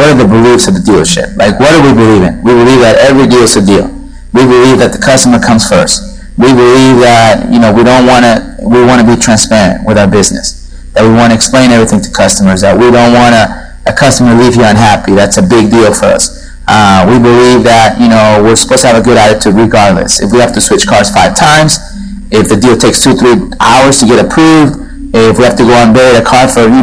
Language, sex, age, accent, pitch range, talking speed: English, male, 30-49, American, 110-135 Hz, 250 wpm